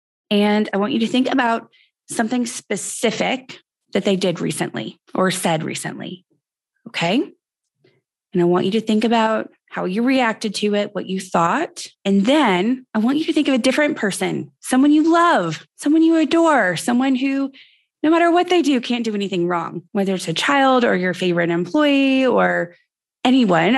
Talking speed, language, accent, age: 175 wpm, English, American, 20-39